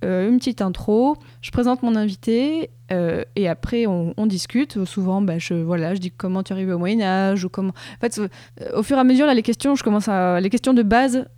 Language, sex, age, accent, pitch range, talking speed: French, female, 20-39, French, 185-235 Hz, 235 wpm